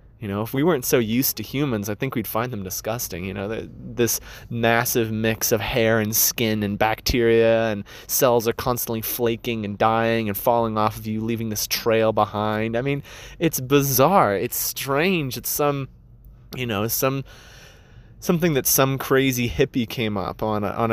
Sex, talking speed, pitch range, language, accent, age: male, 180 wpm, 110-130 Hz, English, American, 20-39